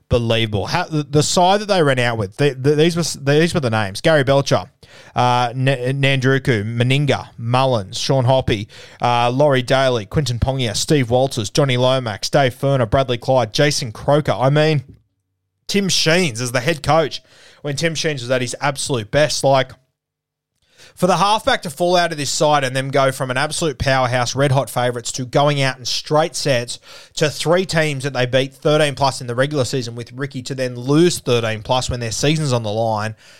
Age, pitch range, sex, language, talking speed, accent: 20-39, 115-145 Hz, male, English, 185 wpm, Australian